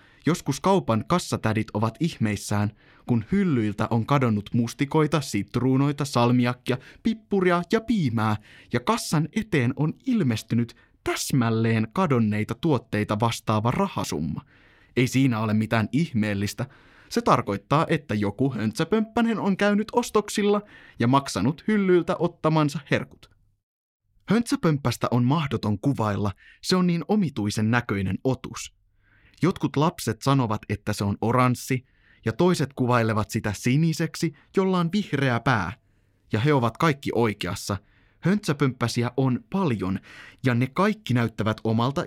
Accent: native